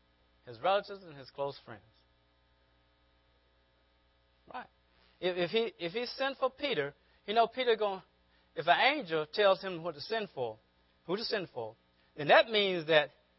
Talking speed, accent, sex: 160 wpm, American, male